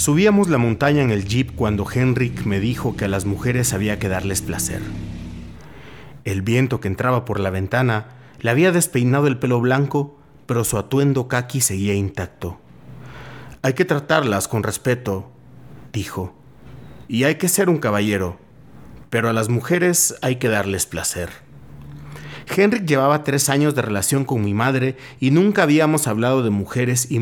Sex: male